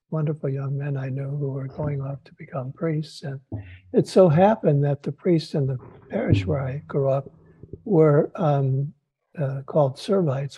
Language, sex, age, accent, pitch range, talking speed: English, male, 60-79, American, 140-165 Hz, 175 wpm